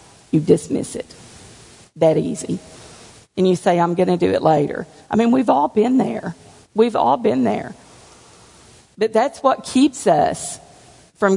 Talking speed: 160 wpm